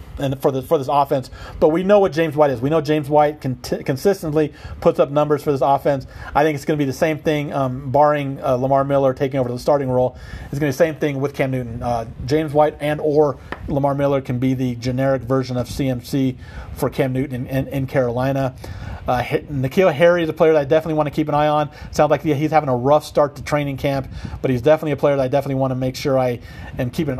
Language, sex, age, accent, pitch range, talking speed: English, male, 40-59, American, 130-150 Hz, 255 wpm